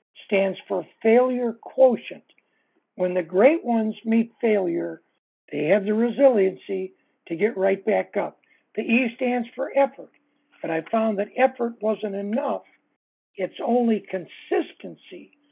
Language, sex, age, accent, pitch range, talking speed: English, male, 60-79, American, 190-250 Hz, 130 wpm